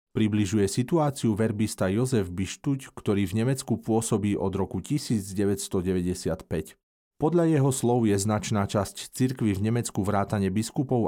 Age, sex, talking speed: 40-59, male, 125 wpm